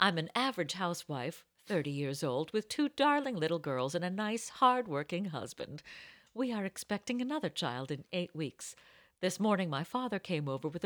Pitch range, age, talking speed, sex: 155-240 Hz, 50-69, 175 wpm, female